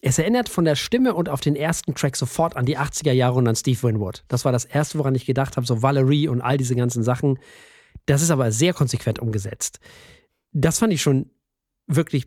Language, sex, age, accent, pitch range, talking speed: German, male, 40-59, German, 125-160 Hz, 220 wpm